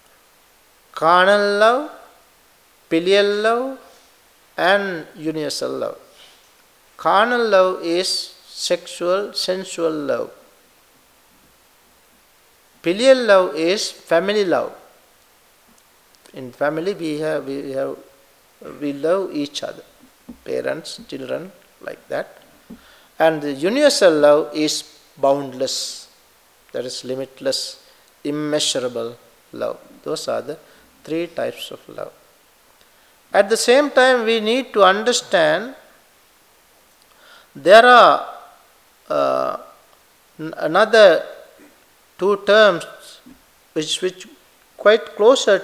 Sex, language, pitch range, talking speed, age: male, English, 155-220 Hz, 90 wpm, 50-69